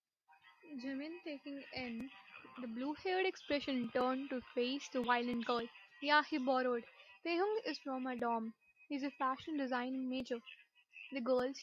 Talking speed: 140 wpm